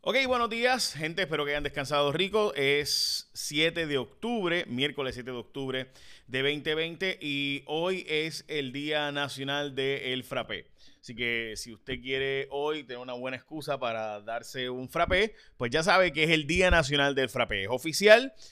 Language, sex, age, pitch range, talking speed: Spanish, male, 30-49, 110-150 Hz, 170 wpm